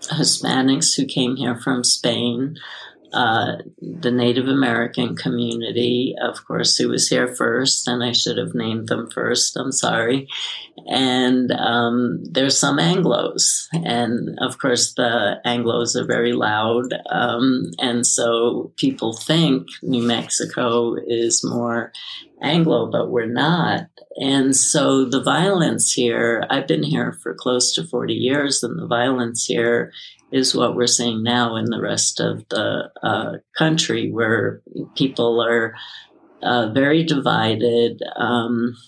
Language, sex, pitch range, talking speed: English, female, 120-135 Hz, 135 wpm